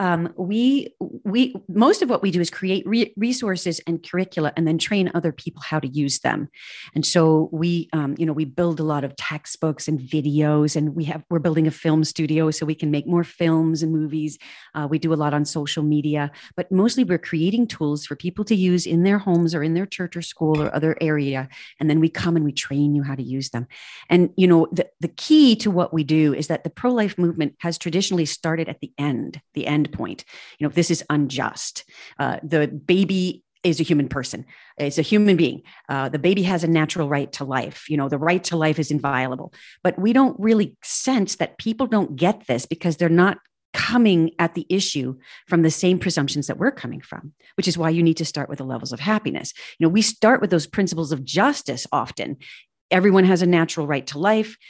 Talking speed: 225 wpm